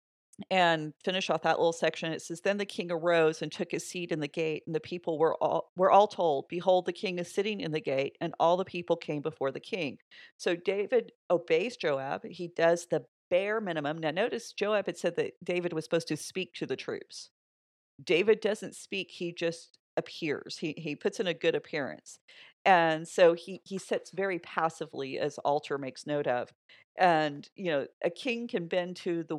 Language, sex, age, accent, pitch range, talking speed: English, female, 40-59, American, 160-190 Hz, 205 wpm